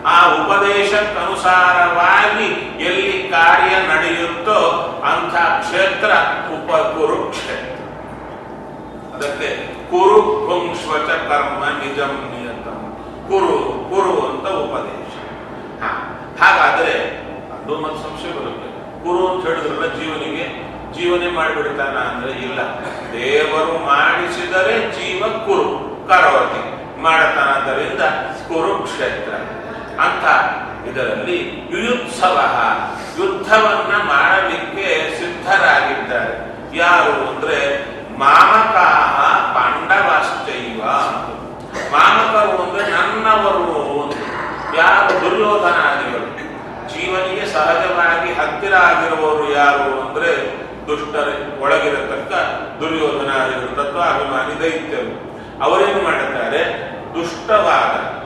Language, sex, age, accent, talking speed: Kannada, male, 40-59, native, 70 wpm